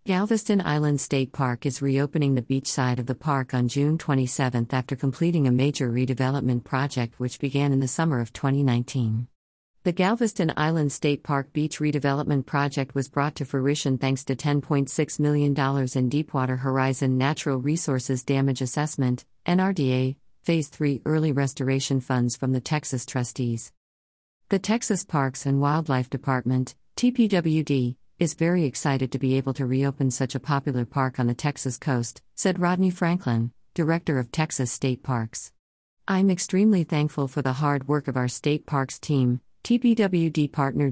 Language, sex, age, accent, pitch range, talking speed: English, female, 50-69, American, 130-150 Hz, 155 wpm